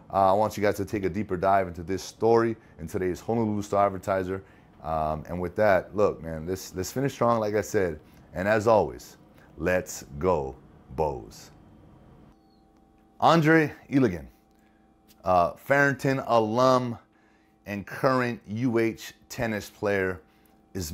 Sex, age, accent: male, 30-49, American